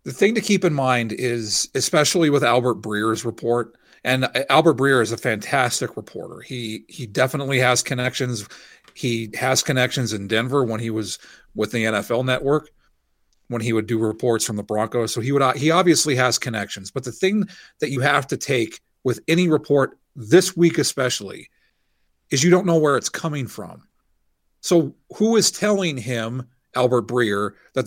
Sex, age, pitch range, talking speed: male, 40-59, 115-160 Hz, 175 wpm